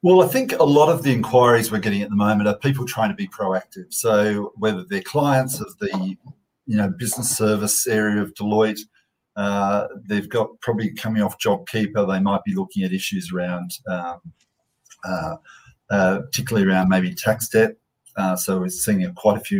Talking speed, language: 185 wpm, English